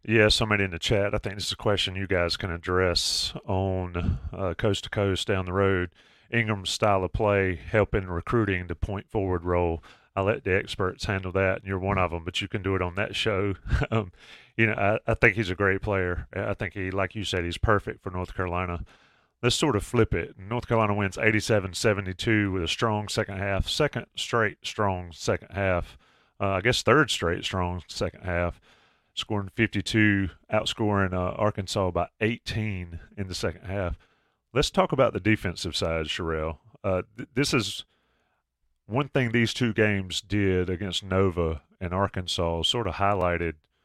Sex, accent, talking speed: male, American, 185 wpm